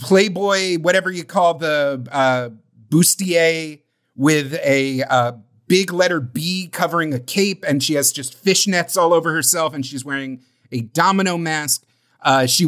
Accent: American